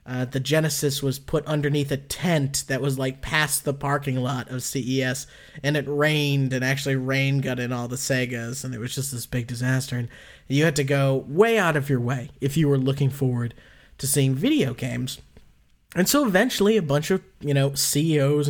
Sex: male